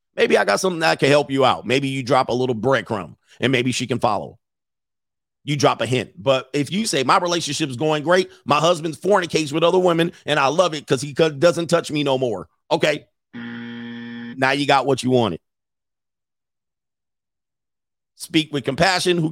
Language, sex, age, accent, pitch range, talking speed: English, male, 40-59, American, 120-160 Hz, 190 wpm